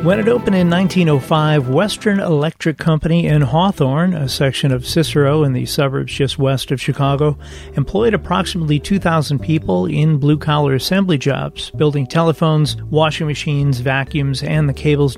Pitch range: 135-160 Hz